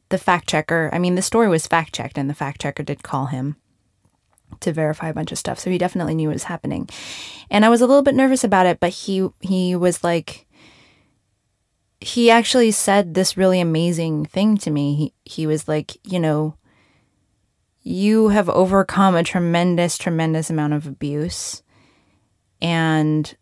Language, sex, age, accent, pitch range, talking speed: English, female, 20-39, American, 150-200 Hz, 175 wpm